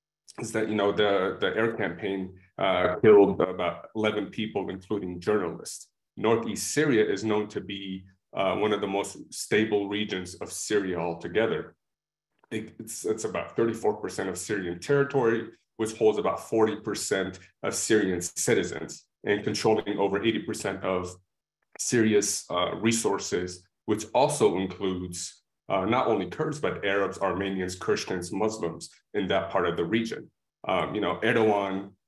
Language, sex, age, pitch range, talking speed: English, male, 30-49, 90-110 Hz, 140 wpm